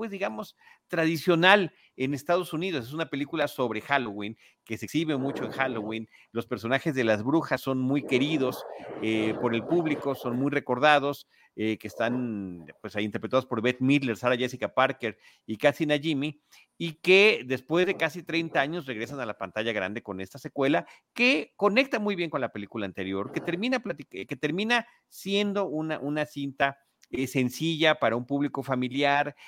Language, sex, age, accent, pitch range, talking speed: Spanish, male, 40-59, Mexican, 110-145 Hz, 175 wpm